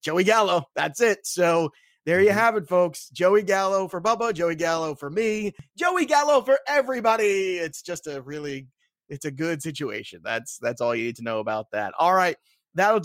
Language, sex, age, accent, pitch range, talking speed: English, male, 30-49, American, 145-215 Hz, 195 wpm